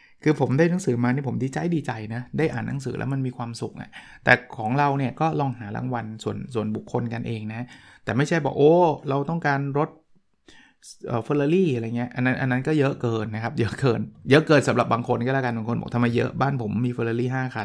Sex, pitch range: male, 115-150 Hz